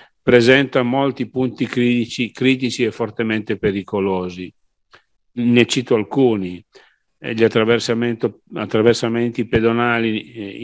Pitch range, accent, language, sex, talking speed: 105-120 Hz, native, Italian, male, 90 wpm